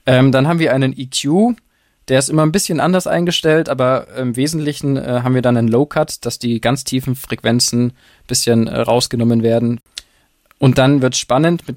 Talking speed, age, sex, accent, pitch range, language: 175 wpm, 20-39, male, German, 115-135 Hz, German